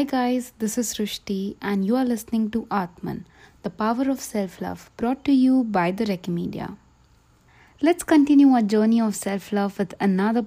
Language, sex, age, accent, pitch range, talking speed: English, female, 20-39, Indian, 195-260 Hz, 165 wpm